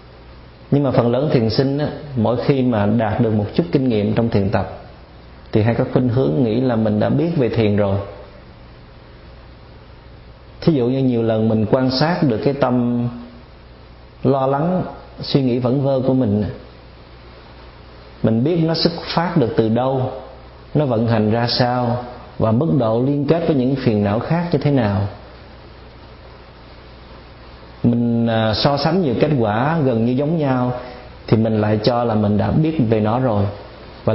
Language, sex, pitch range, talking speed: Vietnamese, male, 105-130 Hz, 170 wpm